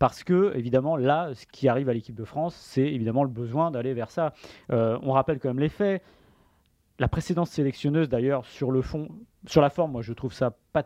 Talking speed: 220 wpm